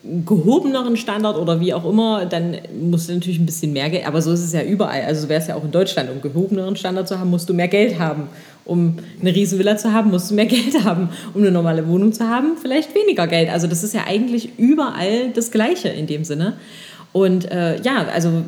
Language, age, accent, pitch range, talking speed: English, 30-49, German, 170-215 Hz, 235 wpm